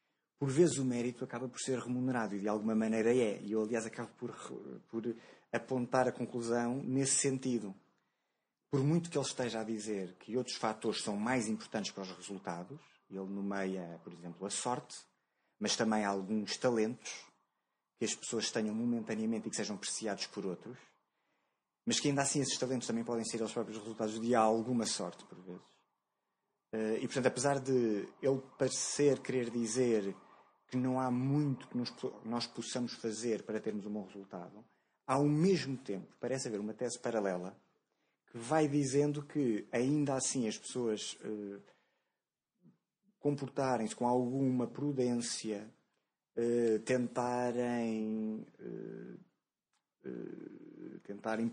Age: 20-39